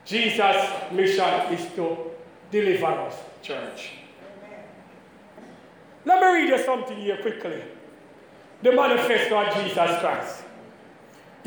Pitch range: 205-280 Hz